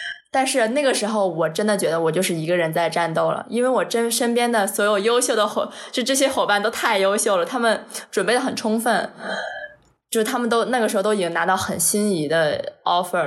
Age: 20-39